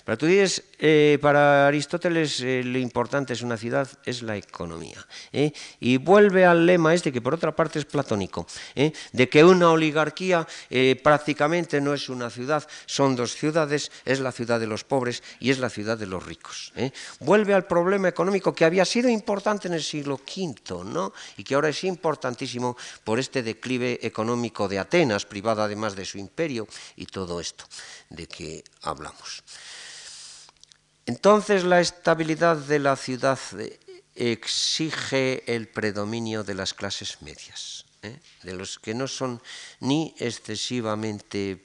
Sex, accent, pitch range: male, Spanish, 110-160 Hz